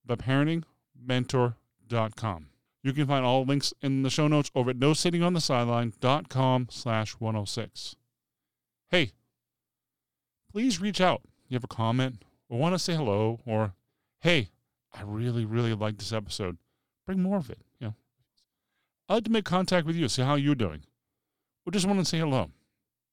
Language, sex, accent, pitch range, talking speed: English, male, American, 110-150 Hz, 175 wpm